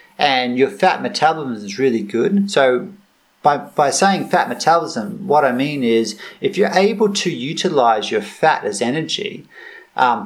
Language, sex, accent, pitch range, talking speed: English, male, Australian, 130-205 Hz, 160 wpm